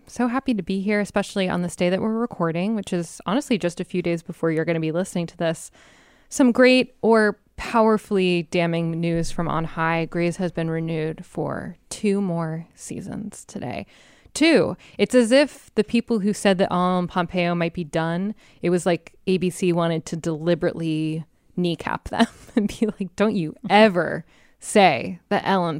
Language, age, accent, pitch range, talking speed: English, 20-39, American, 165-210 Hz, 180 wpm